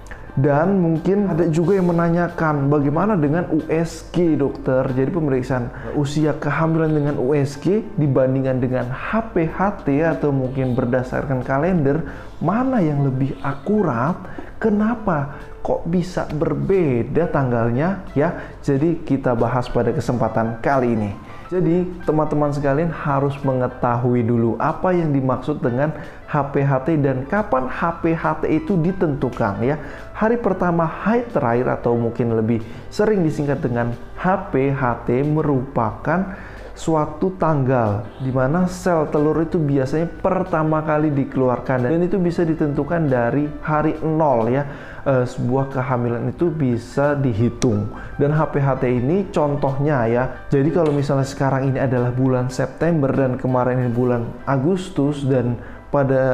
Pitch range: 130-165 Hz